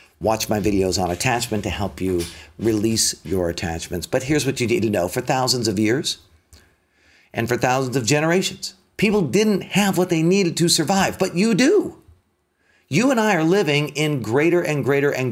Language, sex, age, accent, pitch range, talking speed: English, male, 40-59, American, 105-145 Hz, 190 wpm